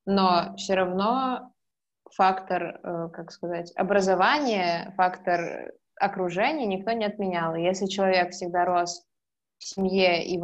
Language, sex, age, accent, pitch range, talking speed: Russian, female, 20-39, native, 175-200 Hz, 120 wpm